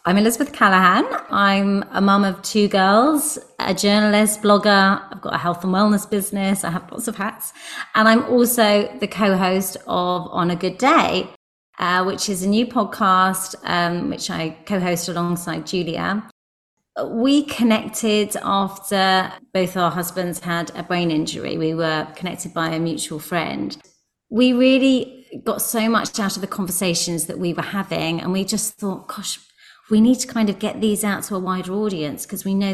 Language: English